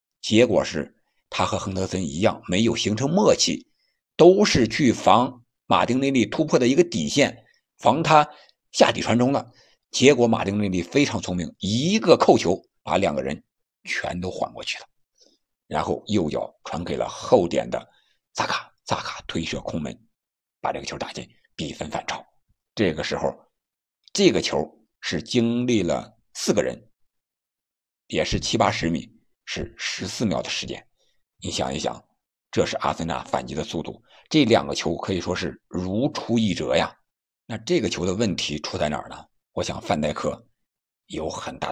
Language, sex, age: Chinese, male, 60-79